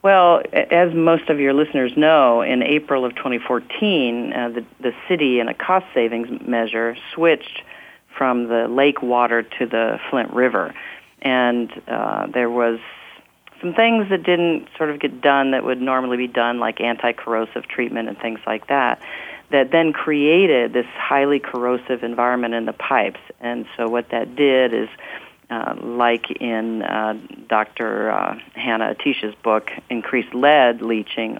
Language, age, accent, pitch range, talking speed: English, 40-59, American, 115-145 Hz, 155 wpm